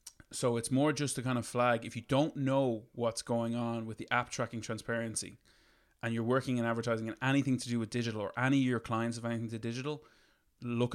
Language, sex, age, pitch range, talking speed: English, male, 20-39, 110-120 Hz, 225 wpm